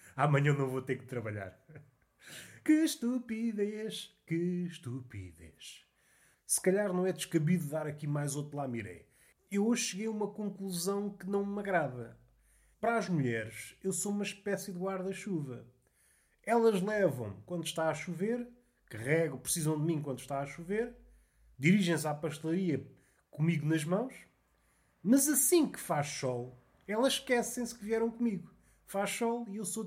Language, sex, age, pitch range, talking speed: Portuguese, male, 30-49, 125-195 Hz, 155 wpm